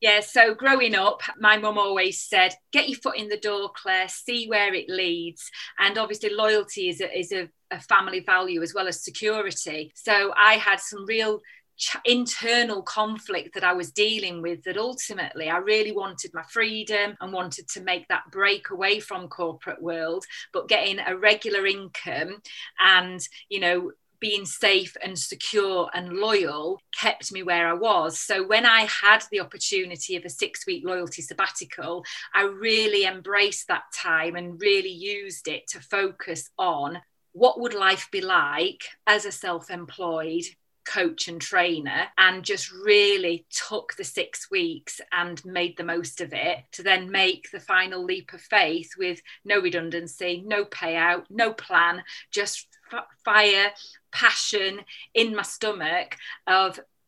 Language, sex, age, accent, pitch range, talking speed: English, female, 40-59, British, 175-215 Hz, 160 wpm